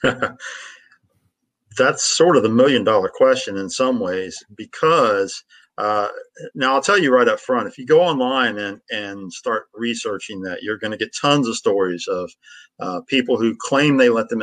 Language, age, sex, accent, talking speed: English, 50-69, male, American, 180 wpm